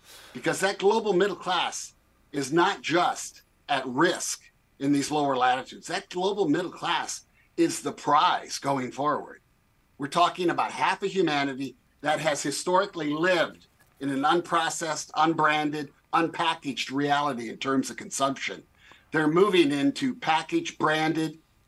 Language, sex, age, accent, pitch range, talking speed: English, male, 50-69, American, 140-175 Hz, 135 wpm